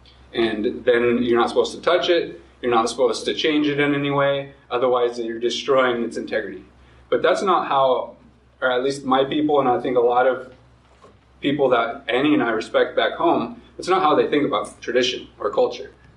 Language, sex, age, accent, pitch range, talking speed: English, male, 20-39, American, 105-155 Hz, 200 wpm